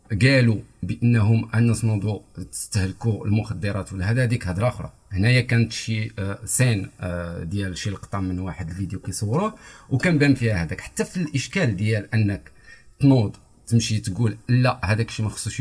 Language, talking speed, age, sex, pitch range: Arabic, 145 wpm, 50-69, male, 105-130 Hz